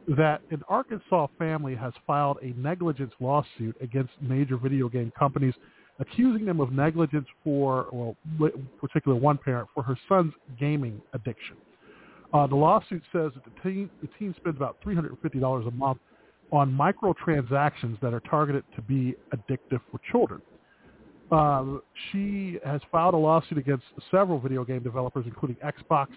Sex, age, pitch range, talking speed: male, 40-59, 130-165 Hz, 150 wpm